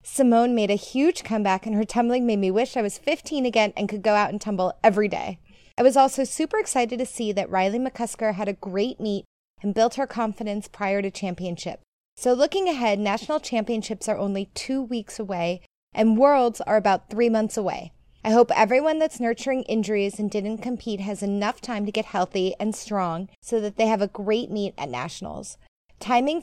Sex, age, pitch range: female, 20-39, 205-250 Hz